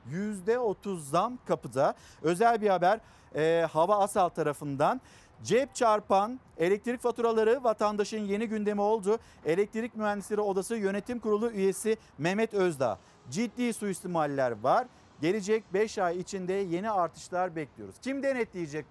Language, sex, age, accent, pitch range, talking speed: Turkish, male, 50-69, native, 175-220 Hz, 120 wpm